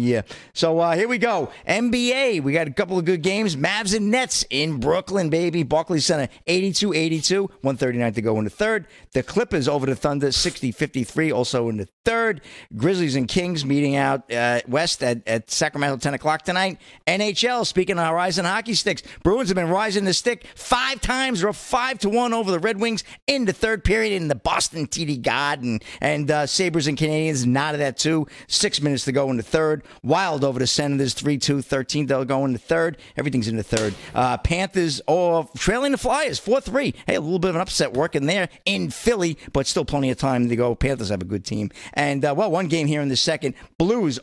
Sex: male